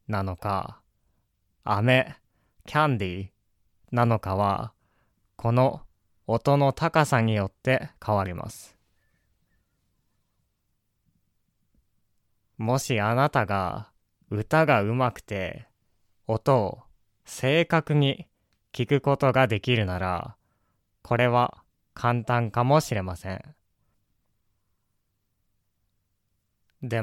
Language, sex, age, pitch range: Japanese, male, 20-39, 95-125 Hz